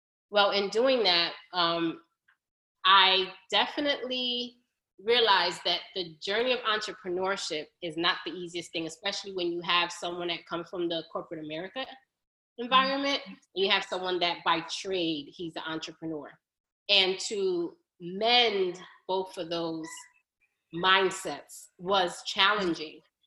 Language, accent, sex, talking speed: English, American, female, 125 wpm